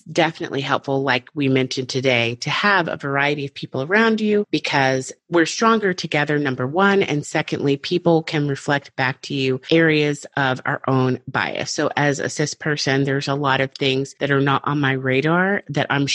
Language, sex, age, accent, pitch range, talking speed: English, female, 30-49, American, 135-170 Hz, 190 wpm